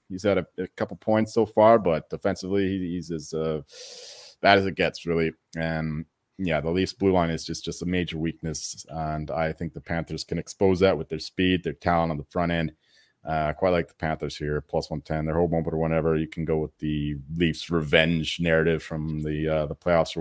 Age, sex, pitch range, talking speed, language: 30-49, male, 80-100 Hz, 225 wpm, English